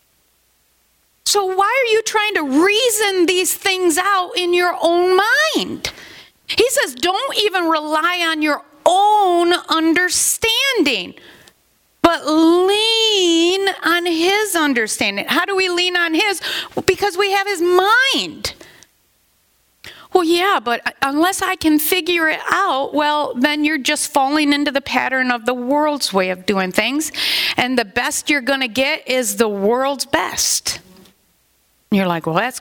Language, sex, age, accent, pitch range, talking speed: English, female, 40-59, American, 220-355 Hz, 145 wpm